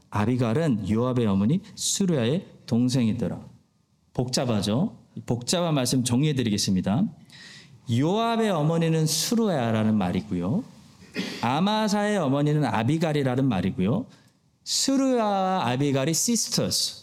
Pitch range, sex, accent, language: 120-195 Hz, male, native, Korean